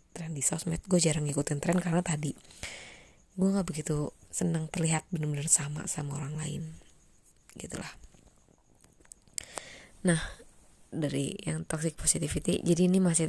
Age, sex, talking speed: 20-39, female, 125 wpm